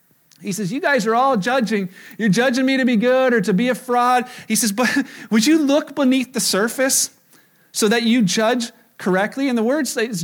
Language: English